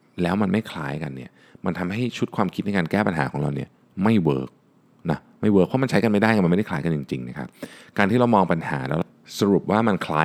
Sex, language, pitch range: male, Thai, 75-100 Hz